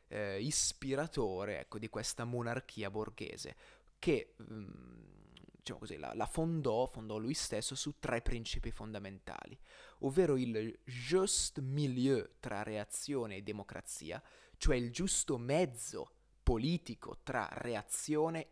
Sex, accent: male, native